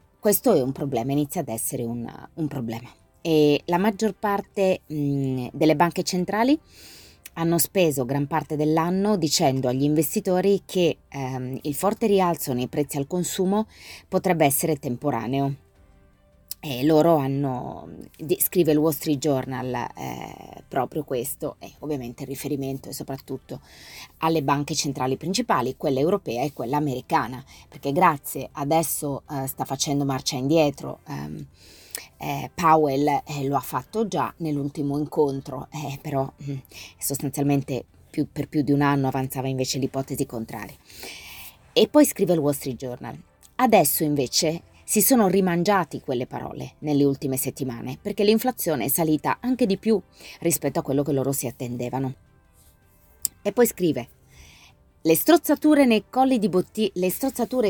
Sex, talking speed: female, 145 wpm